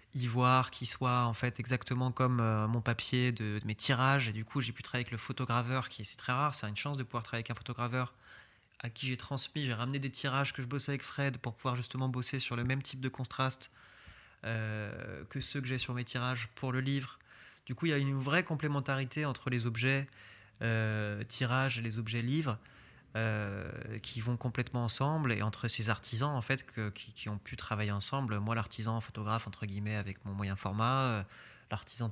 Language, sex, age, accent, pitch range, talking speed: French, male, 20-39, French, 110-130 Hz, 215 wpm